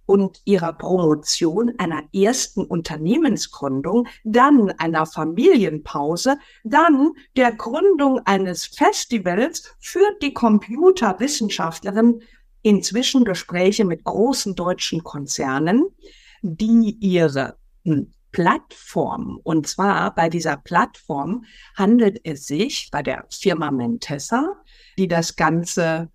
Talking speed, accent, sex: 95 wpm, German, female